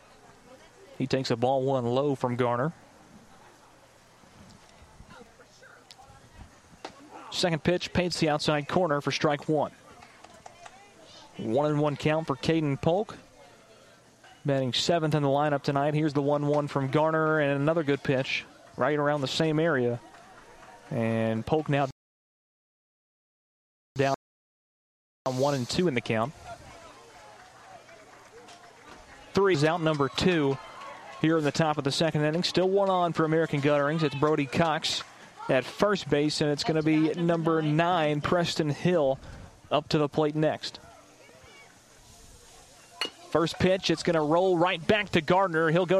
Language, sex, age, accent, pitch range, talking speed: English, male, 30-49, American, 140-175 Hz, 140 wpm